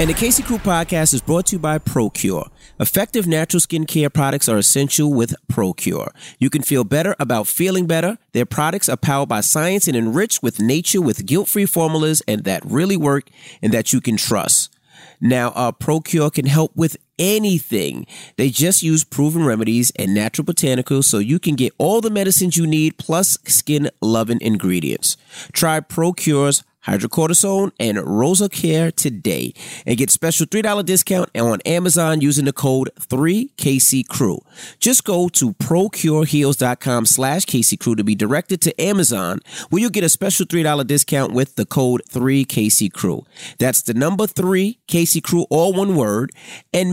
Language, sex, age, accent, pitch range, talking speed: English, male, 30-49, American, 125-175 Hz, 160 wpm